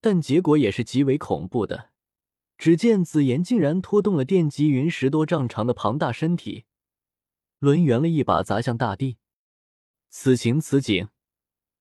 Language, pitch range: Chinese, 115-160 Hz